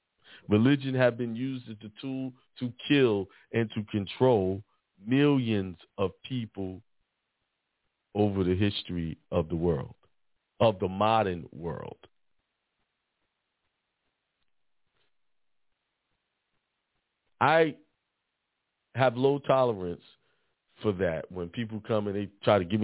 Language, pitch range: English, 95-120 Hz